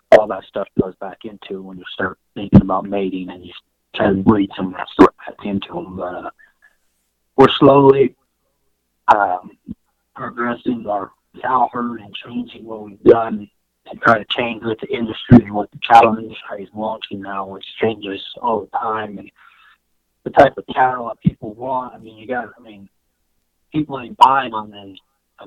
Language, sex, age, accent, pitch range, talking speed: English, male, 30-49, American, 95-115 Hz, 185 wpm